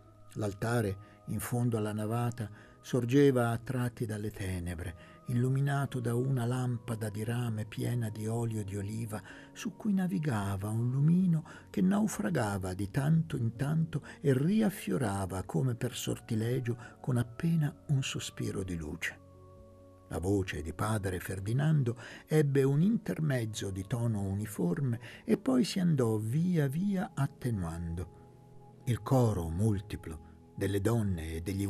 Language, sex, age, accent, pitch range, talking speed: Italian, male, 60-79, native, 100-145 Hz, 130 wpm